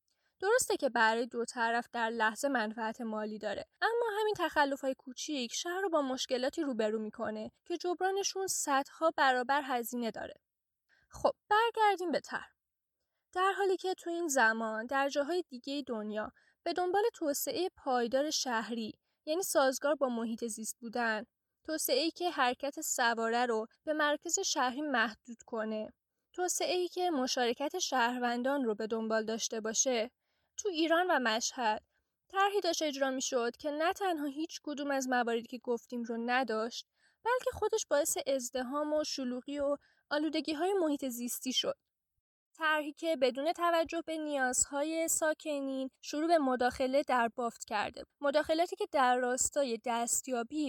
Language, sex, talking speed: Persian, female, 140 wpm